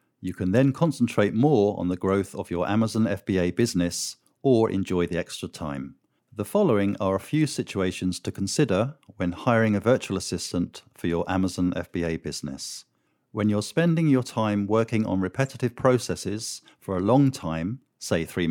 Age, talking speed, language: 50-69, 165 wpm, English